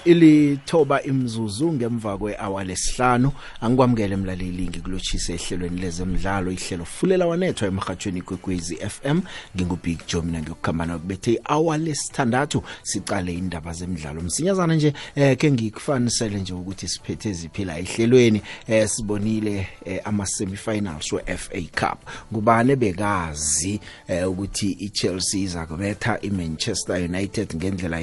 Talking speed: 120 wpm